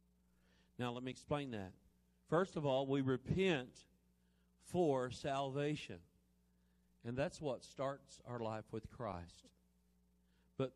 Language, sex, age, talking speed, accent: English, male, 50-69, 115 wpm, American